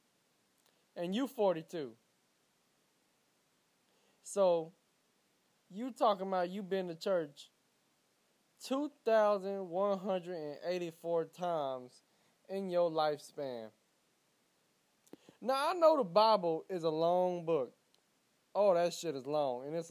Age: 20-39